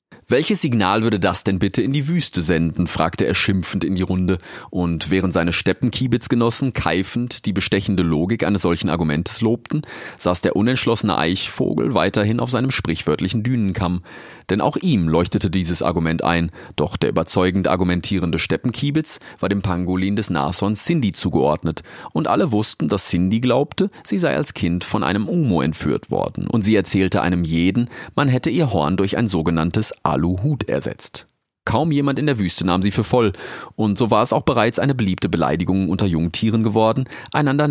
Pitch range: 90-115 Hz